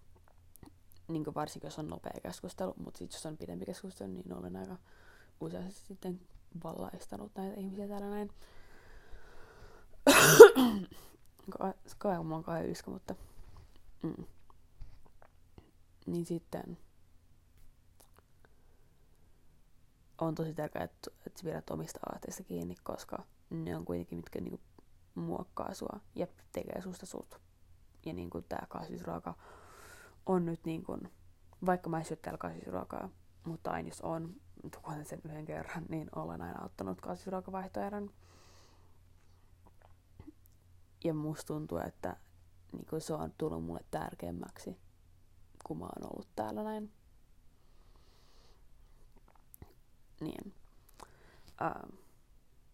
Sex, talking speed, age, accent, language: female, 110 wpm, 20-39, native, Finnish